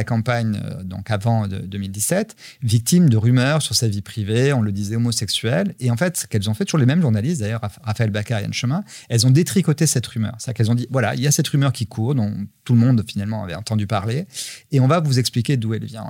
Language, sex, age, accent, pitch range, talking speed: French, male, 40-59, French, 115-150 Hz, 240 wpm